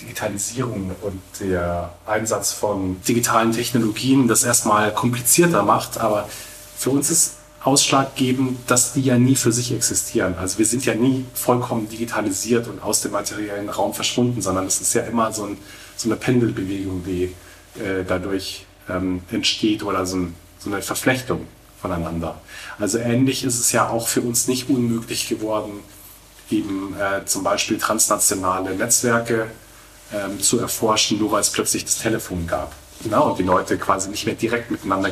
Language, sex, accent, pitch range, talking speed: German, male, German, 100-130 Hz, 155 wpm